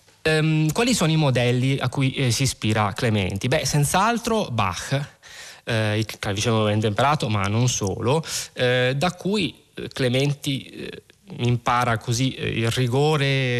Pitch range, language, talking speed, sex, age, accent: 115-145 Hz, Italian, 145 wpm, male, 20-39, native